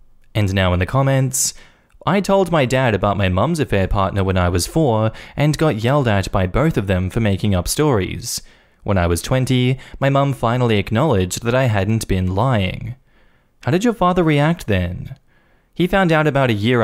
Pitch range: 95-130 Hz